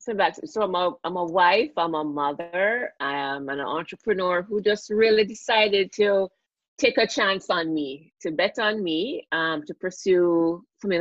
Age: 30-49